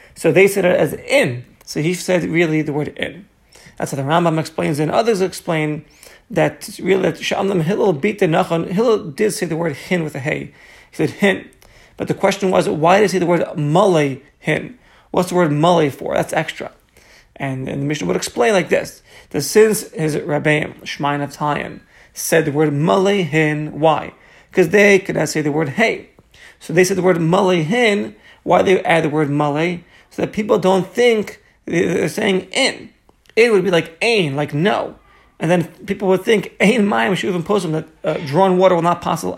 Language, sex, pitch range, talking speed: English, male, 155-190 Hz, 205 wpm